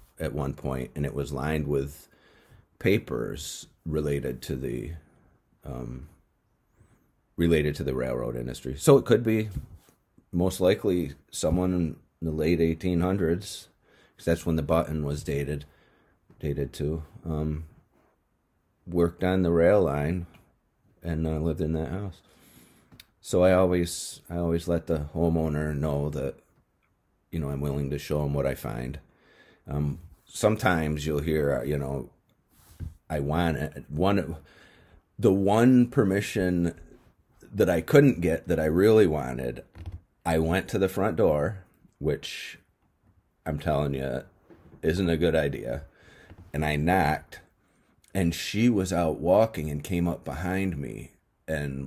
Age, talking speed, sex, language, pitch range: 40-59, 140 wpm, male, English, 70-90 Hz